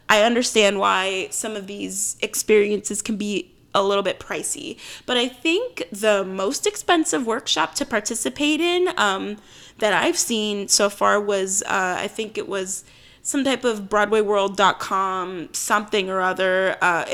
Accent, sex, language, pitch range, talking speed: American, female, English, 200-245 Hz, 150 wpm